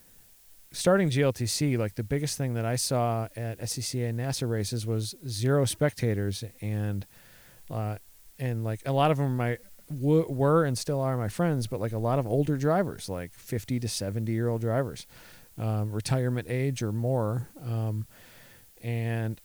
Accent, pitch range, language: American, 110-135 Hz, English